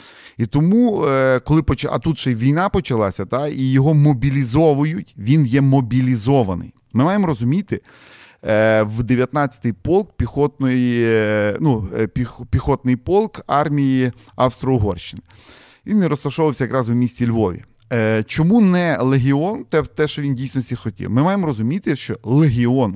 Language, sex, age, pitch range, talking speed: Ukrainian, male, 30-49, 115-150 Hz, 130 wpm